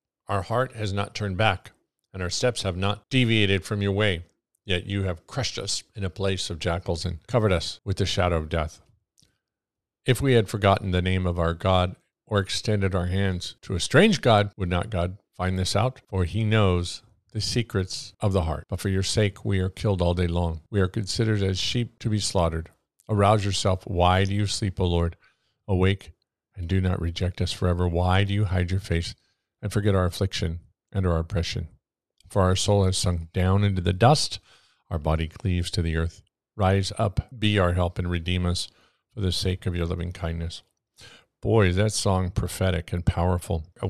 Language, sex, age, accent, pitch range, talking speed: English, male, 50-69, American, 90-105 Hz, 200 wpm